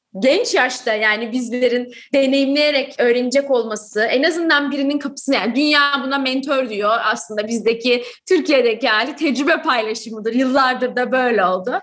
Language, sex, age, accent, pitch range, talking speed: Turkish, female, 30-49, native, 240-295 Hz, 135 wpm